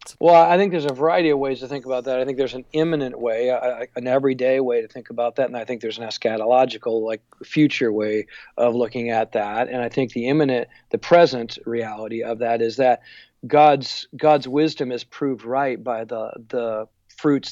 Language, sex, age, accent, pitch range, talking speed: English, male, 40-59, American, 120-150 Hz, 210 wpm